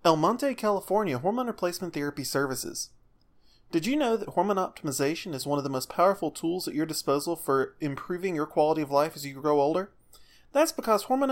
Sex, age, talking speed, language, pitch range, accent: male, 30-49, 190 wpm, English, 150-210 Hz, American